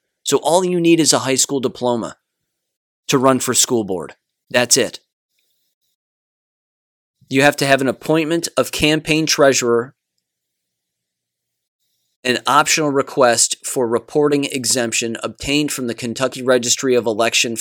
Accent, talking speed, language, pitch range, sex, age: American, 130 wpm, English, 115-140 Hz, male, 30-49